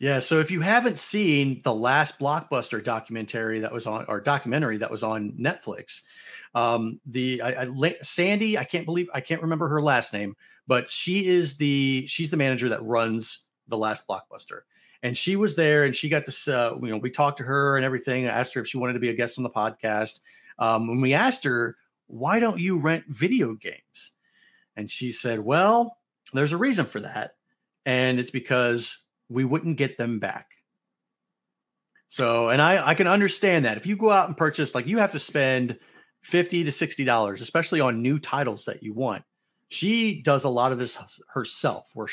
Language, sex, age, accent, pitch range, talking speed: English, male, 40-59, American, 120-165 Hz, 200 wpm